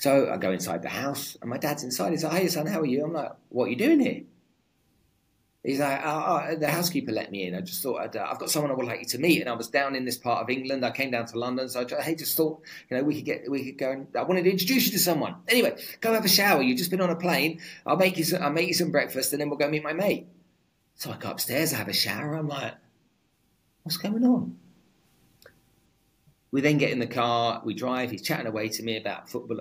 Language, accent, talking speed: English, British, 280 wpm